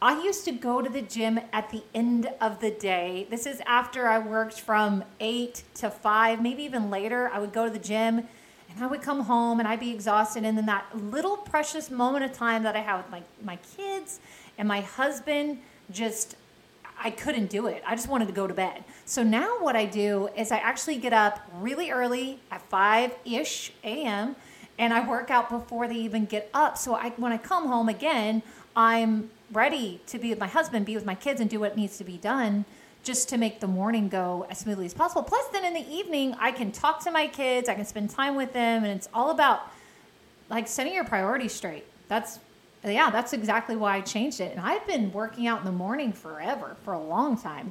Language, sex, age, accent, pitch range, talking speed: English, female, 30-49, American, 210-255 Hz, 220 wpm